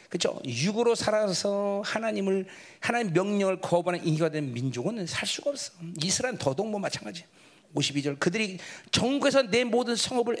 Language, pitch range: Korean, 175-265 Hz